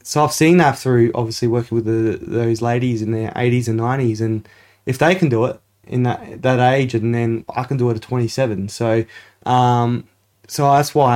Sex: male